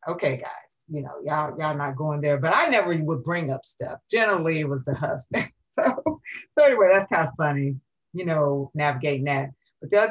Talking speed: 210 wpm